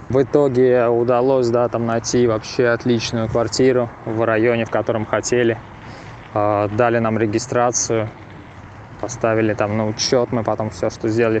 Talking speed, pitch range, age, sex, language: 125 wpm, 110-120 Hz, 20-39, male, Russian